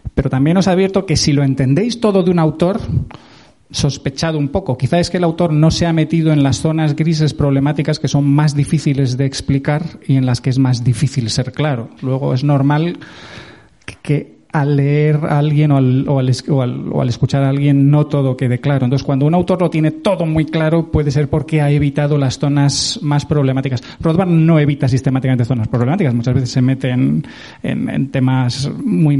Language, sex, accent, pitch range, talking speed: Spanish, male, Spanish, 135-165 Hz, 205 wpm